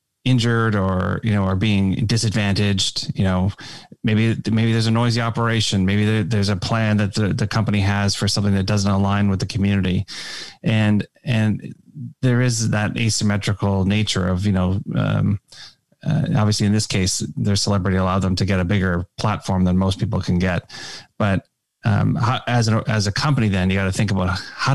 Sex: male